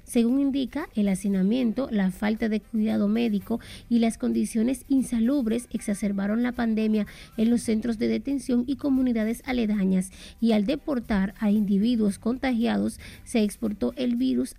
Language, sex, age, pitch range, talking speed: Spanish, female, 30-49, 205-255 Hz, 140 wpm